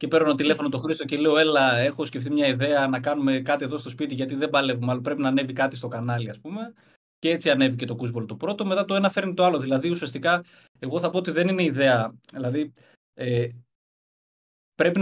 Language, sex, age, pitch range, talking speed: Greek, male, 20-39, 130-180 Hz, 215 wpm